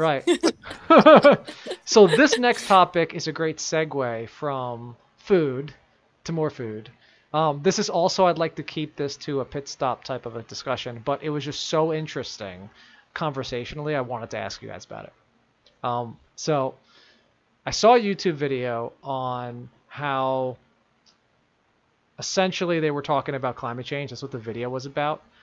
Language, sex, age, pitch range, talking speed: English, male, 20-39, 125-155 Hz, 160 wpm